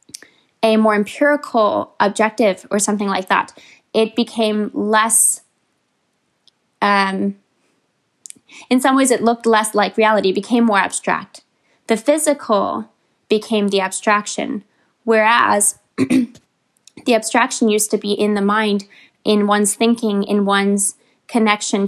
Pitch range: 205-235 Hz